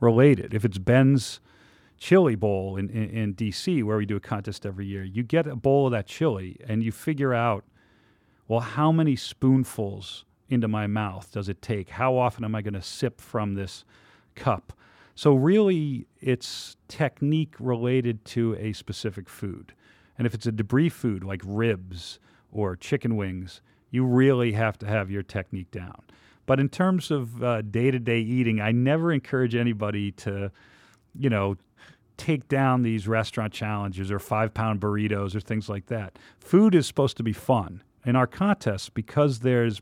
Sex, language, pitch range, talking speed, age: male, English, 105-125 Hz, 170 wpm, 40-59